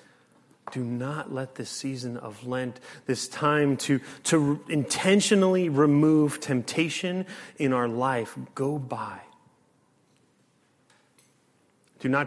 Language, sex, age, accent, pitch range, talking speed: English, male, 30-49, American, 125-145 Hz, 105 wpm